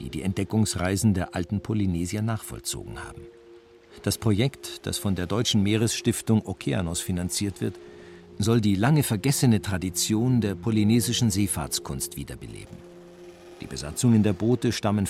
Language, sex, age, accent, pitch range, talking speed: German, male, 50-69, German, 95-120 Hz, 125 wpm